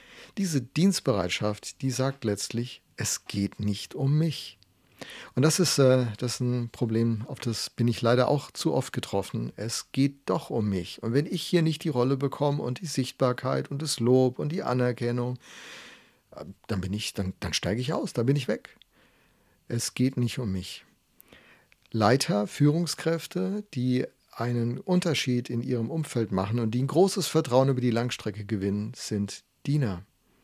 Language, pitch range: German, 110-140 Hz